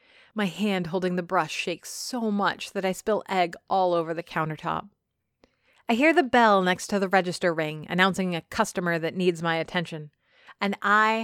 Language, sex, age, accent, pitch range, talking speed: English, female, 30-49, American, 165-230 Hz, 180 wpm